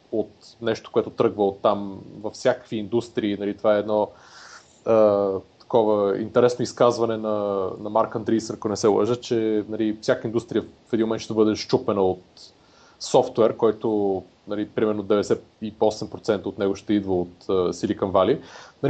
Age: 20-39